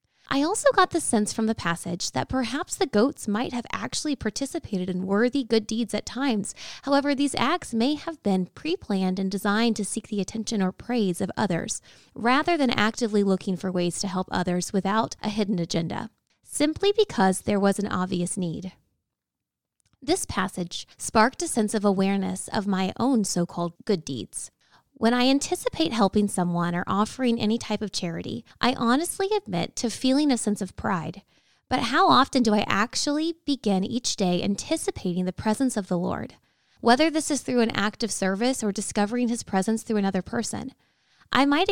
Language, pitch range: English, 195-260 Hz